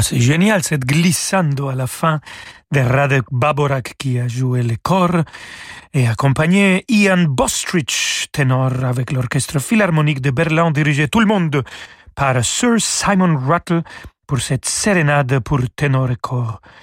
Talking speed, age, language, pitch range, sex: 145 wpm, 40-59, French, 135-170 Hz, male